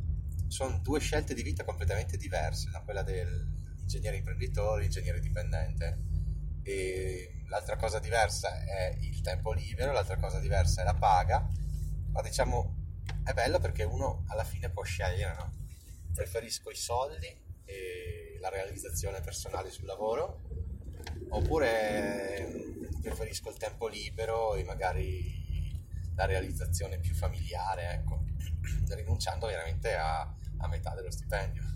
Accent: native